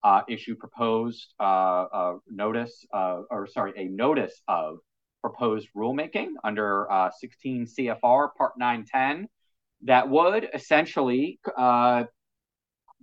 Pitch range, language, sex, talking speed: 95-125 Hz, English, male, 115 wpm